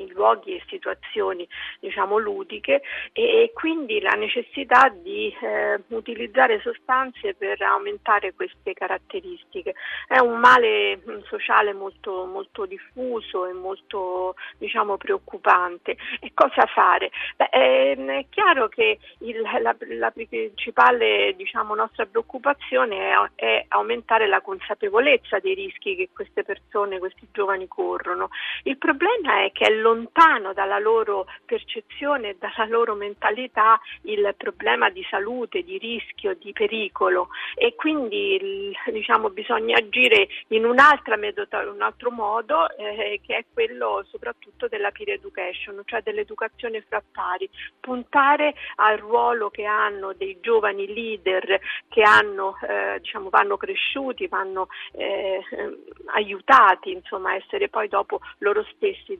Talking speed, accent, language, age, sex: 120 wpm, native, Italian, 50-69, female